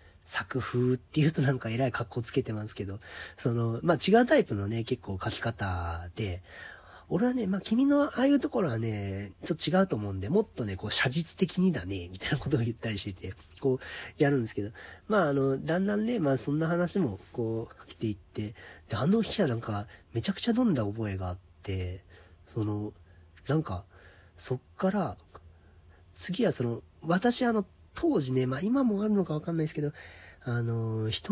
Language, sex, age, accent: Japanese, male, 40-59, native